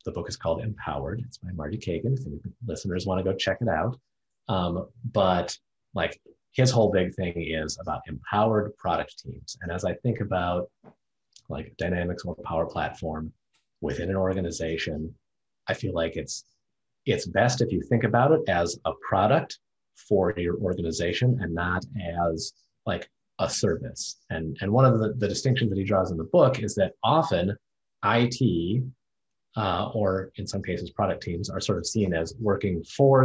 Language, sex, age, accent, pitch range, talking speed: English, male, 30-49, American, 85-110 Hz, 175 wpm